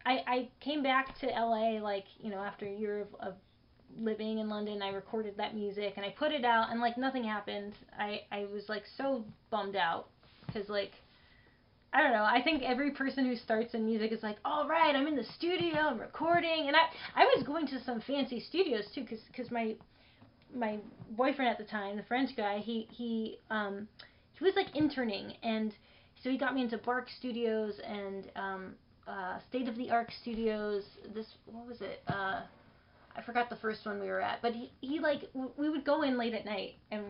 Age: 10-29